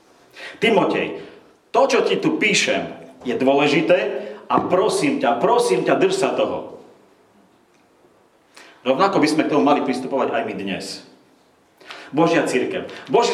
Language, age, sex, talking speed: Slovak, 40-59, male, 130 wpm